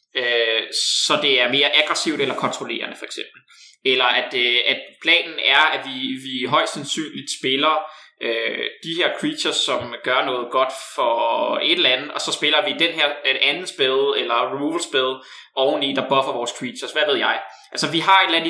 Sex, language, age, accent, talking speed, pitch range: male, Danish, 20-39, native, 190 wpm, 140-200 Hz